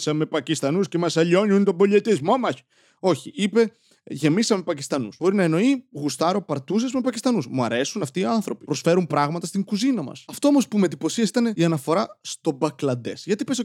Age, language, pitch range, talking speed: 20-39, Greek, 160-245 Hz, 180 wpm